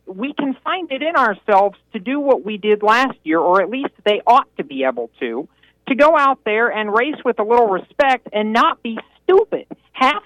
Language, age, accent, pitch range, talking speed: English, 50-69, American, 190-270 Hz, 215 wpm